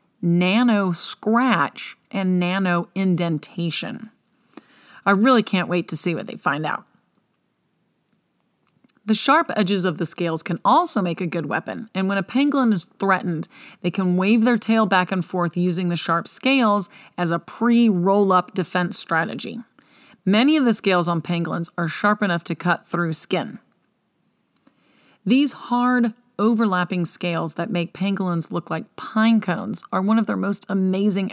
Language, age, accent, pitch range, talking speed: English, 30-49, American, 170-220 Hz, 150 wpm